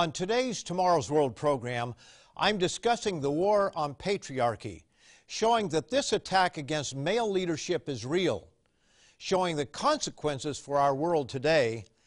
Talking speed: 135 wpm